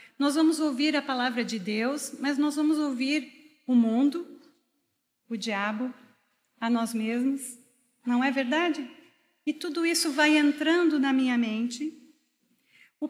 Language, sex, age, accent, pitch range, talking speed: Portuguese, female, 40-59, Brazilian, 240-295 Hz, 135 wpm